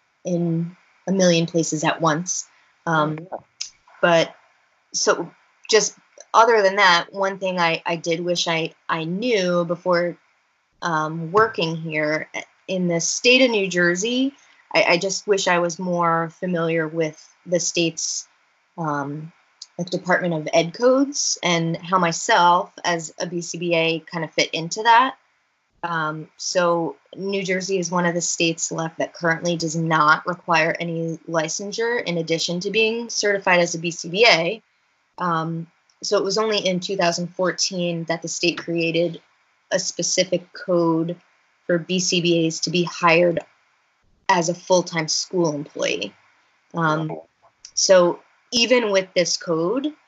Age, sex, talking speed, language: 20-39, female, 140 wpm, English